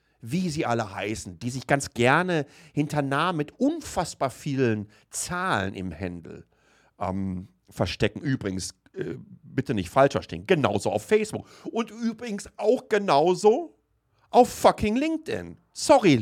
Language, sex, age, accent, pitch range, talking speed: German, male, 50-69, German, 135-215 Hz, 130 wpm